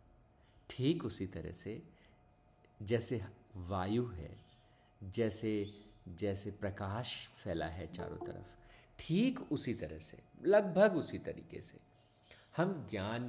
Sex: male